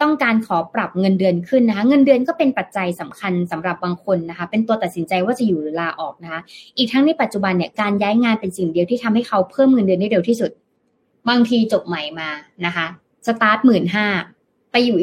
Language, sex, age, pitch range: Thai, female, 20-39, 175-230 Hz